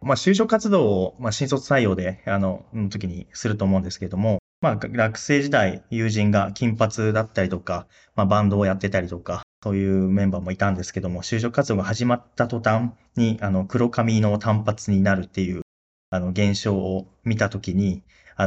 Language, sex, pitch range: Japanese, male, 95-120 Hz